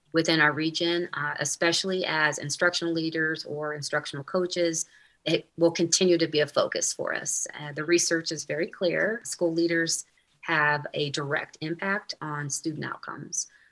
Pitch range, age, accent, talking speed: 150-170 Hz, 30-49, American, 155 wpm